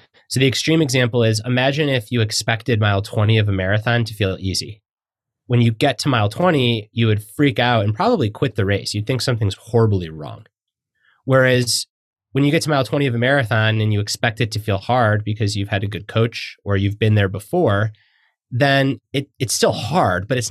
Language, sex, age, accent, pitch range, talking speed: English, male, 30-49, American, 105-135 Hz, 210 wpm